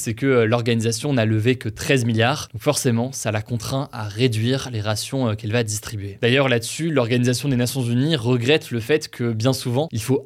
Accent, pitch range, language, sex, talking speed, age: French, 115-140 Hz, French, male, 200 wpm, 20-39